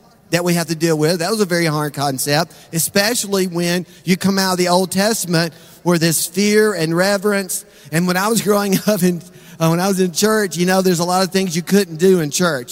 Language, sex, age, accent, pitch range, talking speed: English, male, 40-59, American, 160-200 Hz, 235 wpm